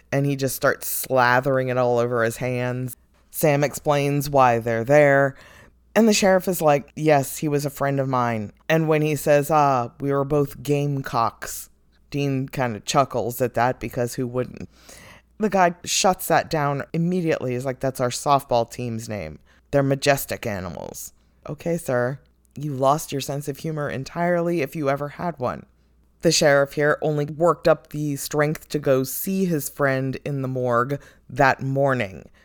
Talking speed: 170 wpm